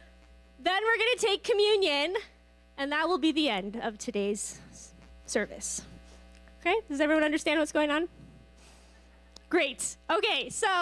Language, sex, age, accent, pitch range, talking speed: English, female, 10-29, American, 240-310 Hz, 135 wpm